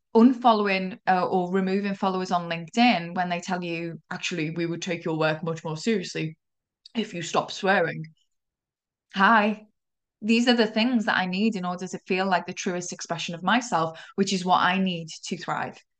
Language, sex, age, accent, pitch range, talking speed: English, female, 10-29, British, 175-210 Hz, 185 wpm